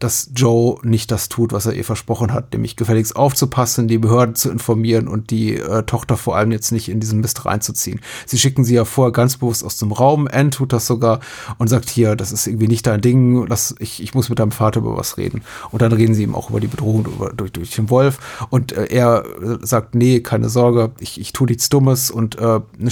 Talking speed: 240 wpm